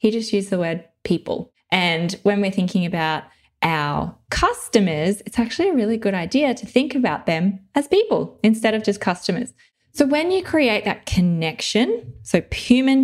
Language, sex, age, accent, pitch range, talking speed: English, female, 20-39, Australian, 180-230 Hz, 170 wpm